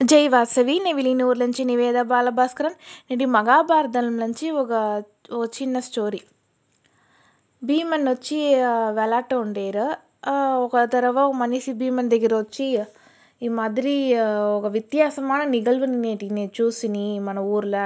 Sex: female